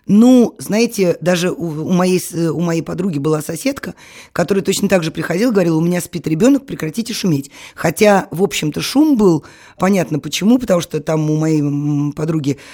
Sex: female